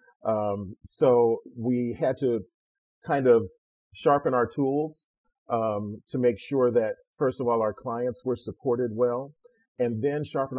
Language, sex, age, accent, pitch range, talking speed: English, male, 40-59, American, 110-135 Hz, 145 wpm